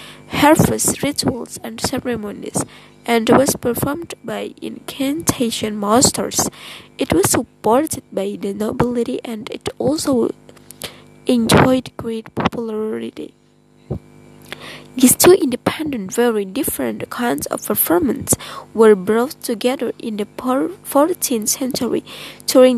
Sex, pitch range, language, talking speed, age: female, 220-265 Hz, English, 100 wpm, 20-39